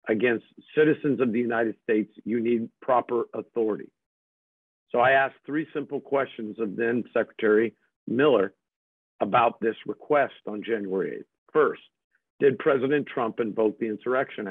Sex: male